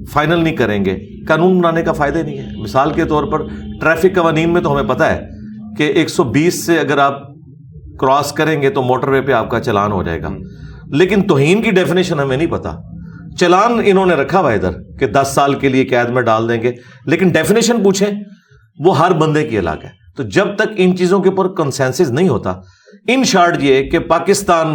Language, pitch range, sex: Urdu, 115-170 Hz, male